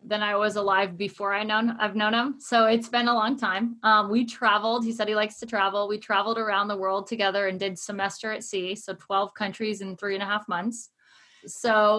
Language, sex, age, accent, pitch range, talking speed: English, female, 20-39, American, 195-230 Hz, 240 wpm